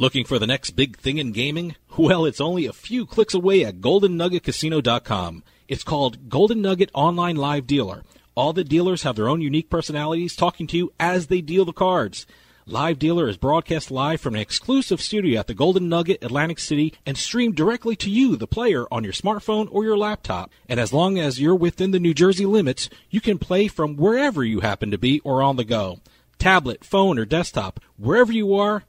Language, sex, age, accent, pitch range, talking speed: English, male, 40-59, American, 140-200 Hz, 205 wpm